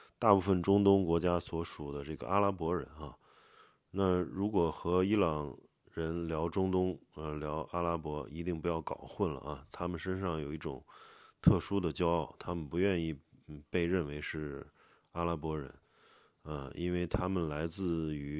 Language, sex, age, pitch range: Chinese, male, 20-39, 80-95 Hz